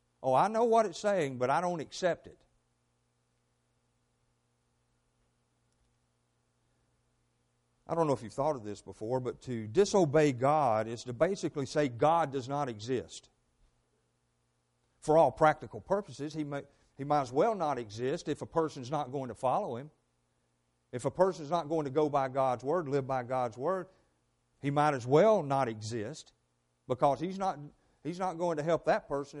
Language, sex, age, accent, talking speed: English, male, 50-69, American, 165 wpm